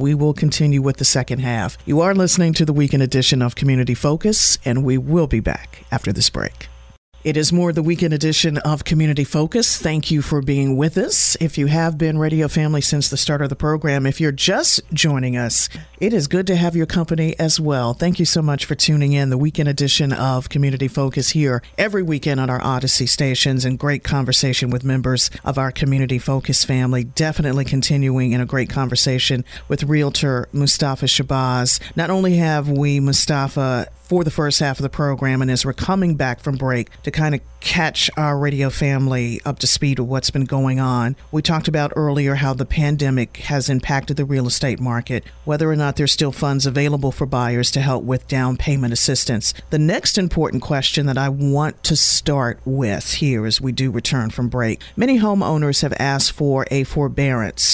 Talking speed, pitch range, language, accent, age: 200 wpm, 130-150 Hz, English, American, 50-69